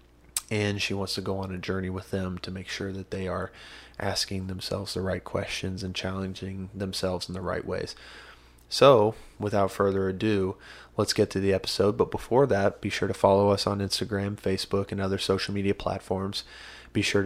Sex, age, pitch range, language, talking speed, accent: male, 20-39, 95-105 Hz, English, 190 wpm, American